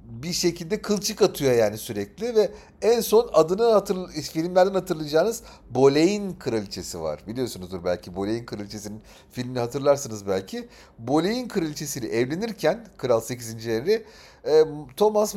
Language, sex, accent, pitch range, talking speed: Turkish, male, native, 110-180 Hz, 115 wpm